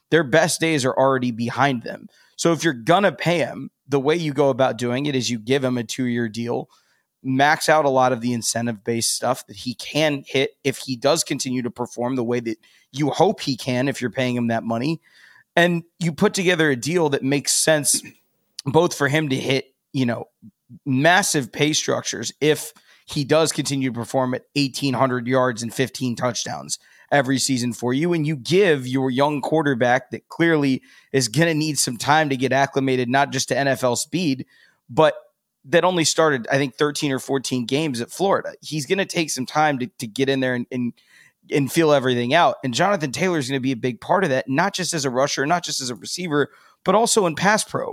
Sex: male